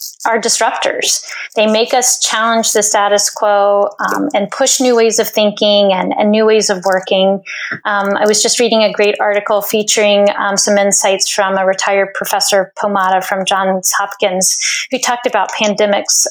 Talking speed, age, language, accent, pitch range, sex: 170 wpm, 30-49, English, American, 200-230 Hz, female